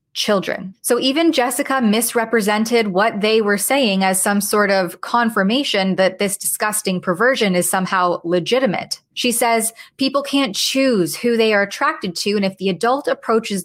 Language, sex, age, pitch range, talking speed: English, female, 20-39, 185-230 Hz, 160 wpm